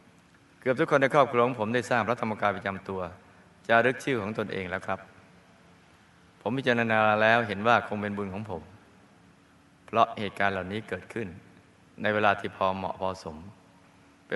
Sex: male